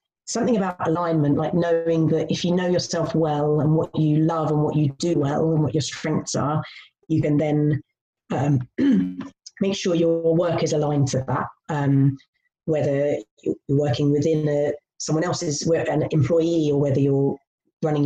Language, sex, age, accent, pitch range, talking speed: English, female, 30-49, British, 140-175 Hz, 170 wpm